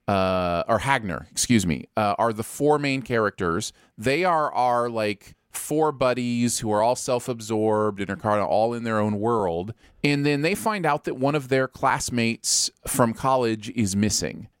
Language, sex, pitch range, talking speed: English, male, 110-150 Hz, 180 wpm